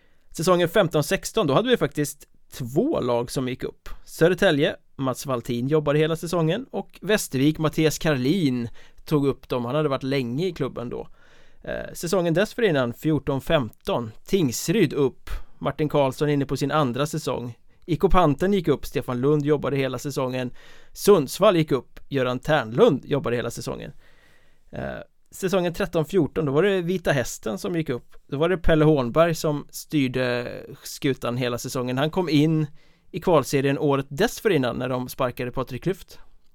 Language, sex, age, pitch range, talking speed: Swedish, male, 30-49, 130-170 Hz, 150 wpm